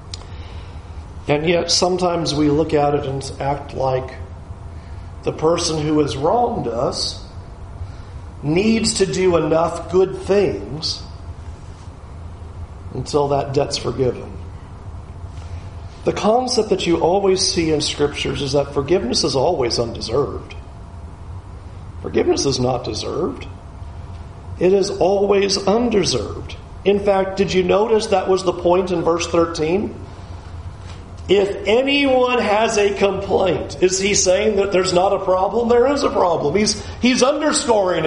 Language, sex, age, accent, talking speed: English, male, 50-69, American, 125 wpm